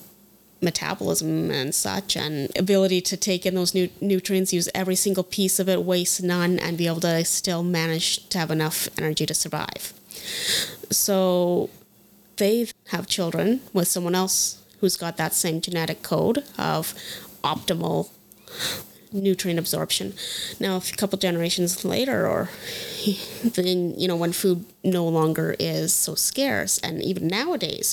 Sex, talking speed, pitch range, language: female, 145 wpm, 170-200 Hz, English